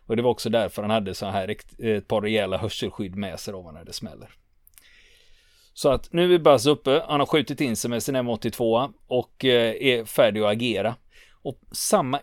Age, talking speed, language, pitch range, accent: 30-49, 200 wpm, Swedish, 110-160 Hz, native